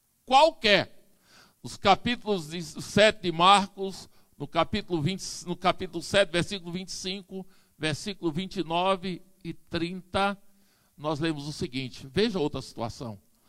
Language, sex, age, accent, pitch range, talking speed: Portuguese, male, 60-79, Brazilian, 175-250 Hz, 115 wpm